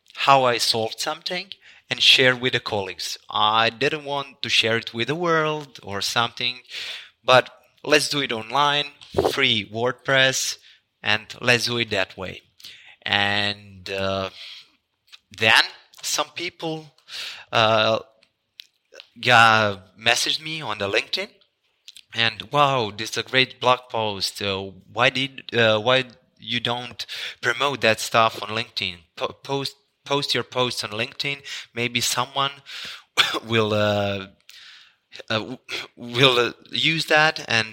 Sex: male